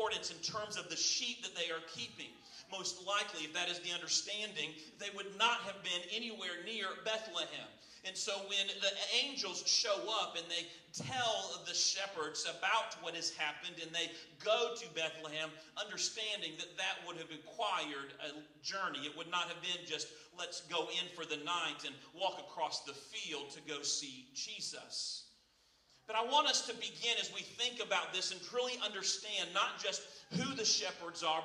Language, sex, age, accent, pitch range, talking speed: English, male, 40-59, American, 165-220 Hz, 180 wpm